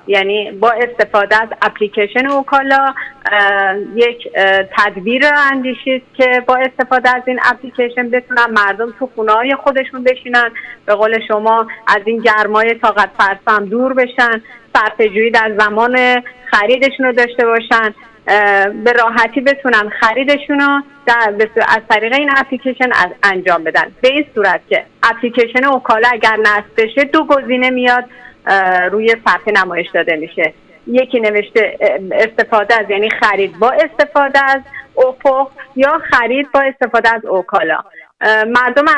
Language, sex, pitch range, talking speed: Persian, female, 215-270 Hz, 130 wpm